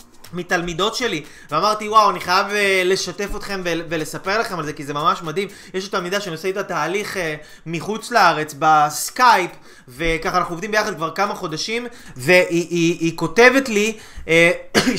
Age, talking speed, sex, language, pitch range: 20-39, 155 wpm, male, Hebrew, 170-225 Hz